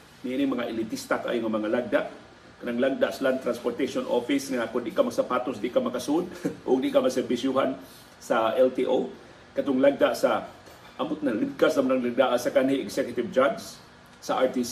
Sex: male